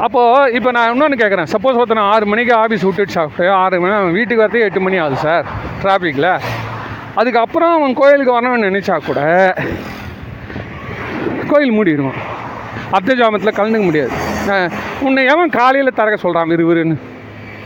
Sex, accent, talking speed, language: male, native, 140 wpm, Tamil